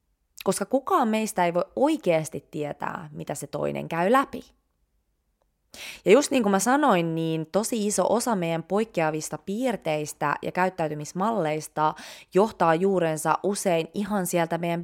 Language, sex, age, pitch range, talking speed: Finnish, female, 20-39, 160-220 Hz, 135 wpm